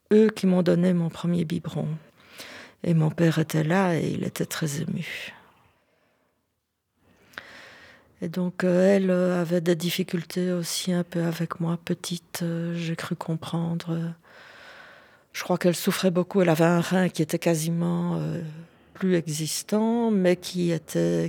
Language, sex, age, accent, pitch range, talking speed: French, female, 40-59, French, 160-180 Hz, 140 wpm